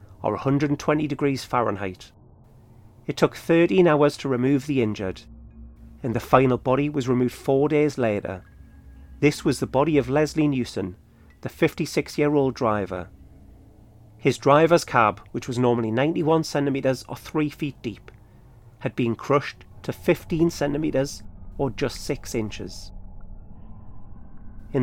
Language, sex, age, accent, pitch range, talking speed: English, male, 40-59, British, 105-145 Hz, 130 wpm